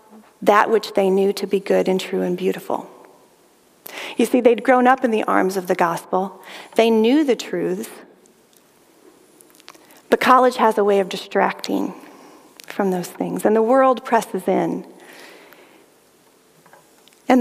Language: English